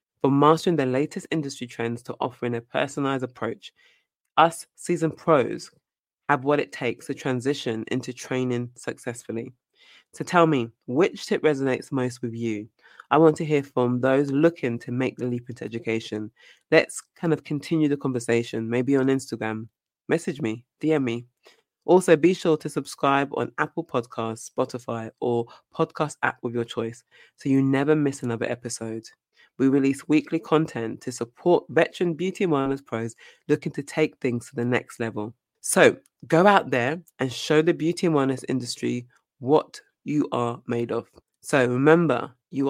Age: 20-39